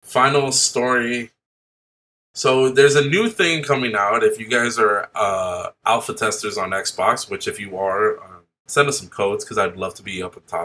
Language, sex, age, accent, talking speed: English, male, 20-39, American, 195 wpm